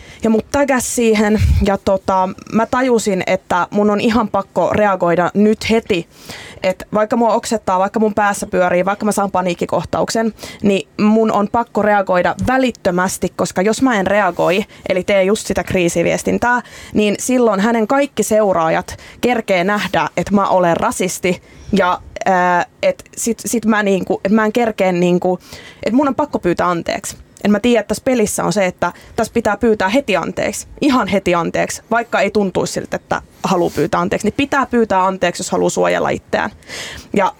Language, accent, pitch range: Finnish, native, 185-235 Hz